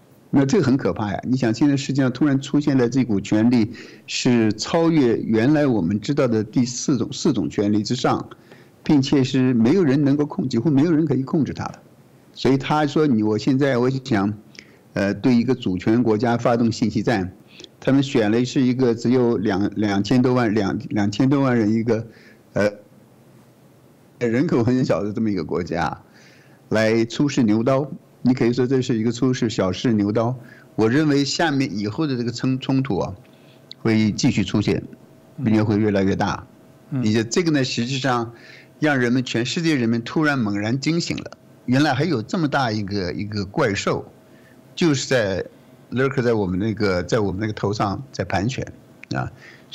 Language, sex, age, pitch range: Chinese, male, 50-69, 105-135 Hz